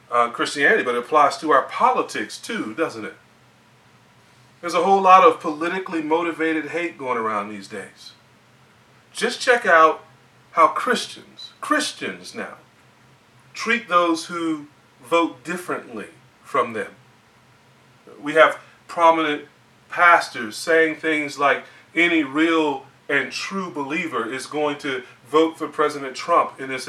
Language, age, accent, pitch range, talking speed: English, 30-49, American, 125-170 Hz, 130 wpm